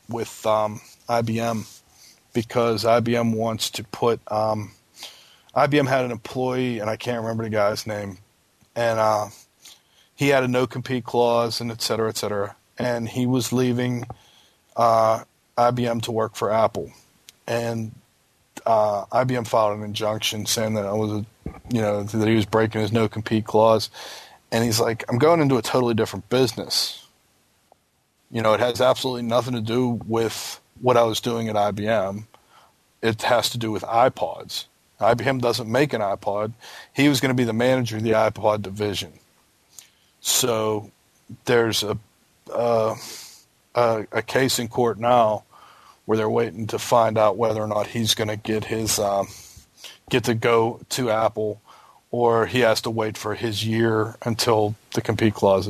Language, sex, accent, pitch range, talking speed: English, male, American, 110-120 Hz, 160 wpm